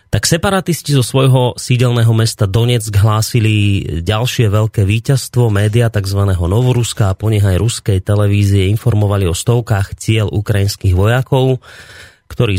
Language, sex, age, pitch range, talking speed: Slovak, male, 30-49, 100-120 Hz, 120 wpm